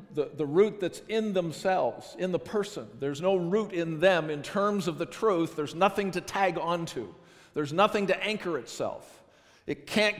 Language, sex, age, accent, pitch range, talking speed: English, male, 50-69, American, 160-195 Hz, 180 wpm